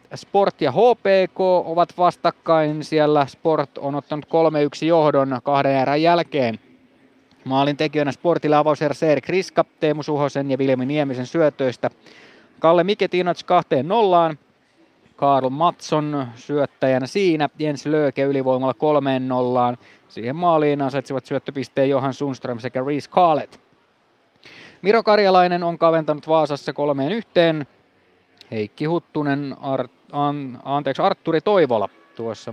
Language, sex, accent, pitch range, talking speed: Finnish, male, native, 130-165 Hz, 105 wpm